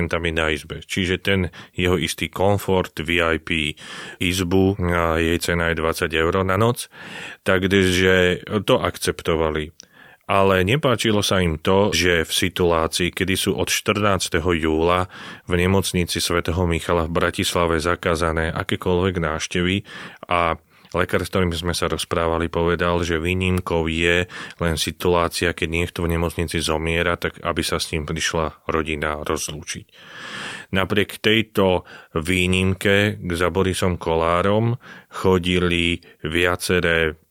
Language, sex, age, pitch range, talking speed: Slovak, male, 30-49, 80-95 Hz, 120 wpm